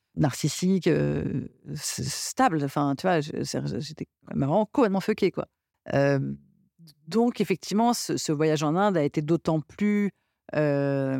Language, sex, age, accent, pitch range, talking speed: French, female, 50-69, French, 140-180 Hz, 145 wpm